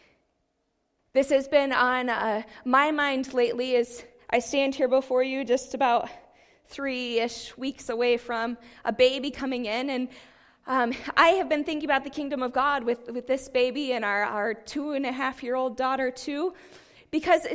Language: English